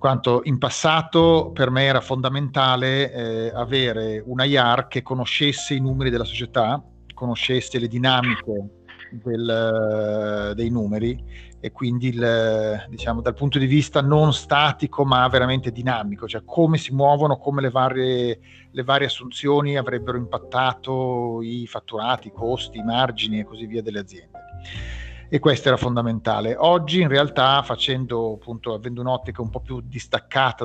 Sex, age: male, 40-59